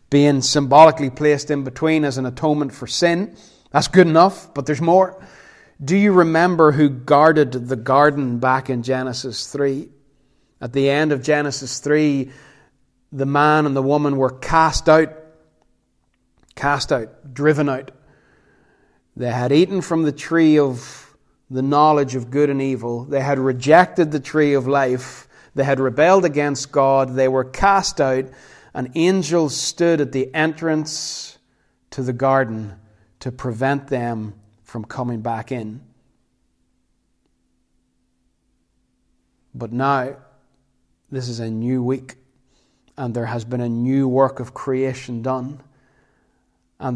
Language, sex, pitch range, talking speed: English, male, 120-145 Hz, 140 wpm